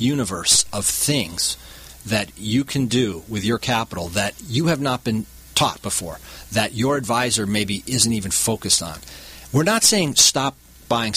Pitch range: 95-130 Hz